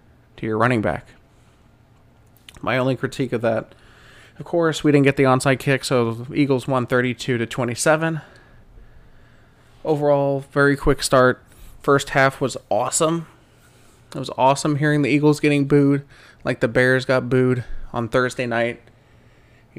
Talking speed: 145 wpm